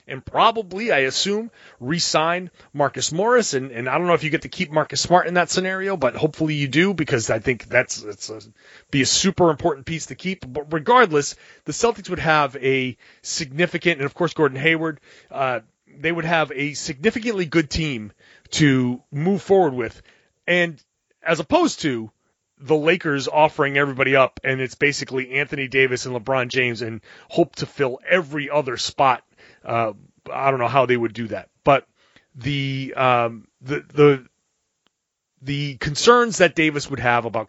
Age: 30-49